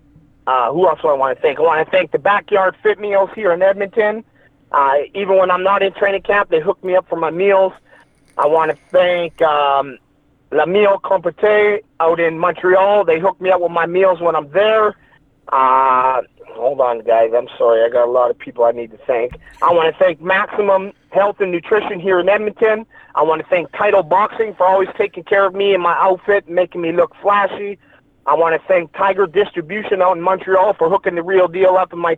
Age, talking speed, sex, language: 40-59, 220 wpm, male, English